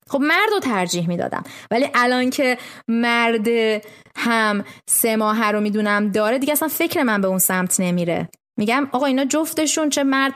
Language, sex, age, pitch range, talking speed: Persian, female, 20-39, 200-265 Hz, 160 wpm